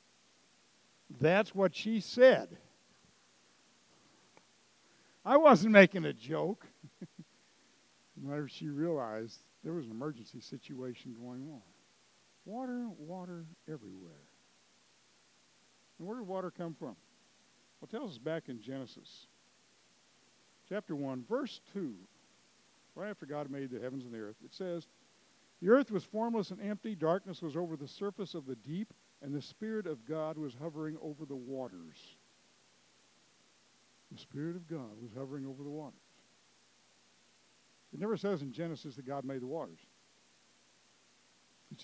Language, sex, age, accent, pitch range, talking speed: English, male, 60-79, American, 135-190 Hz, 135 wpm